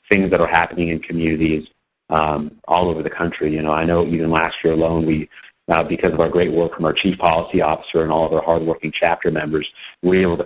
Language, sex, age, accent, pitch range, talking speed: English, male, 30-49, American, 80-85 Hz, 240 wpm